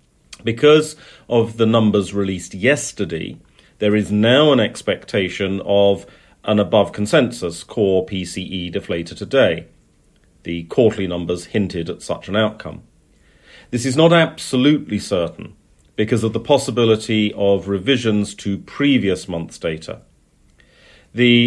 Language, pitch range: English, 95-120 Hz